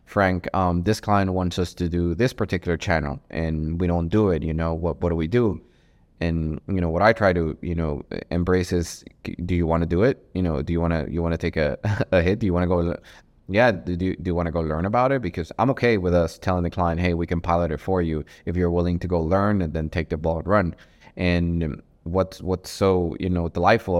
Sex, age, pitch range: male, 20-39, 85-95 Hz